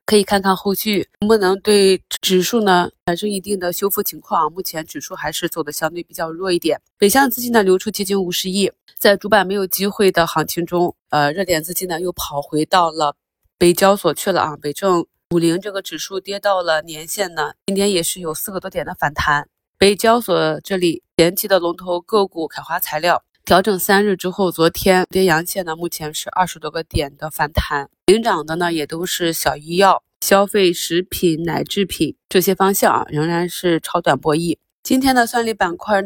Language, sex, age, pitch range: Chinese, female, 20-39, 165-200 Hz